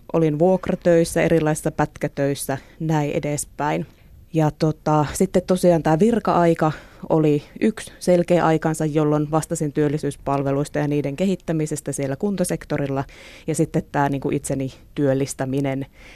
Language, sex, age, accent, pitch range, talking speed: Finnish, female, 20-39, native, 140-165 Hz, 110 wpm